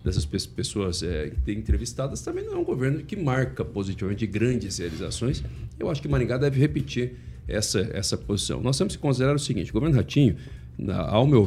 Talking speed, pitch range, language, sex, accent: 190 wpm, 100-135 Hz, Portuguese, male, Brazilian